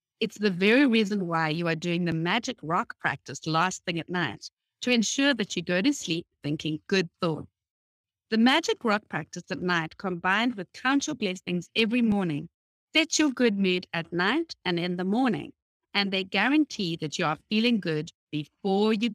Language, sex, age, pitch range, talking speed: English, female, 60-79, 175-240 Hz, 185 wpm